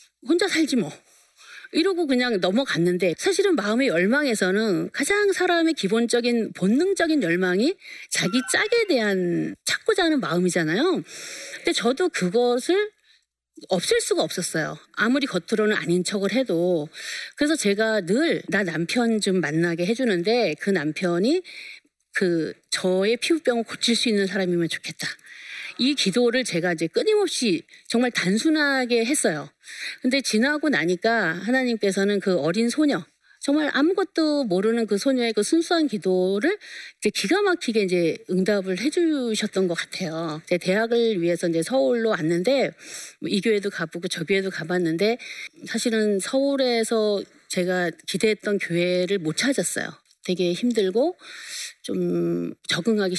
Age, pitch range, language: 40-59, 185-285 Hz, Korean